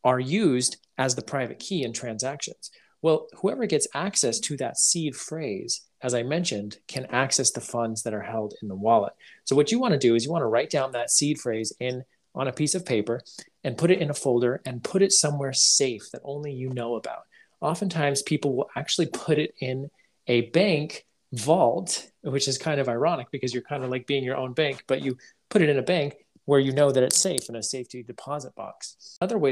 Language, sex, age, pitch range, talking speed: English, male, 30-49, 120-145 Hz, 220 wpm